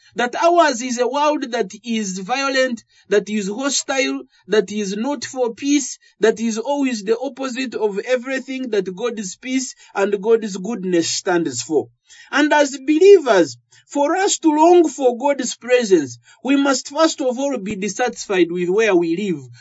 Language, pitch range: English, 200-285 Hz